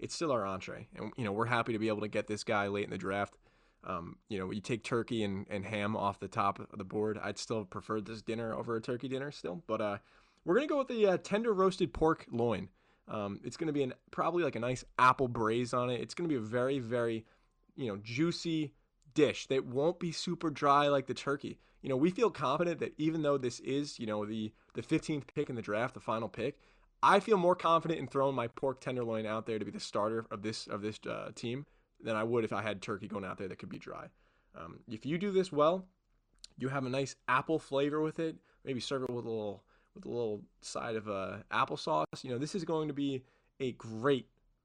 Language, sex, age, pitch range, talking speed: English, male, 20-39, 110-150 Hz, 245 wpm